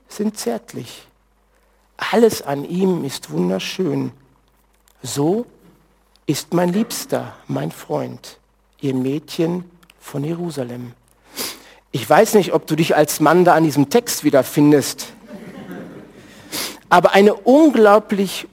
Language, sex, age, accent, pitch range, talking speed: German, male, 50-69, German, 145-200 Hz, 105 wpm